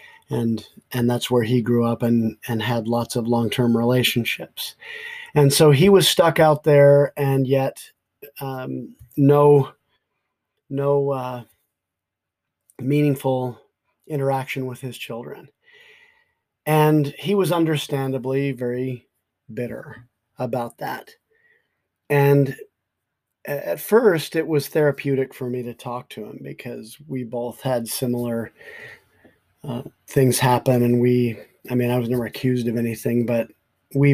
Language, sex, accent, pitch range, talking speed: English, male, American, 120-150 Hz, 130 wpm